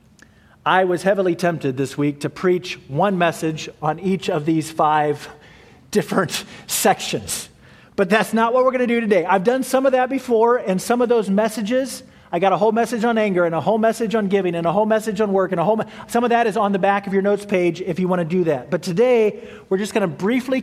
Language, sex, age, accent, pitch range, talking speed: English, male, 40-59, American, 165-220 Hz, 240 wpm